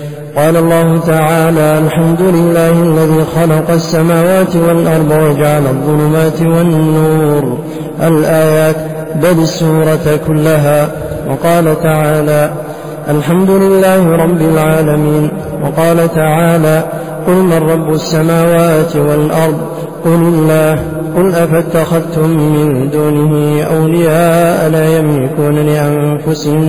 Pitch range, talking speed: 150-170 Hz, 90 wpm